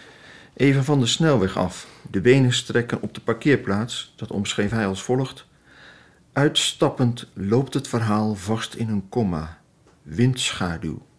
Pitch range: 95-120 Hz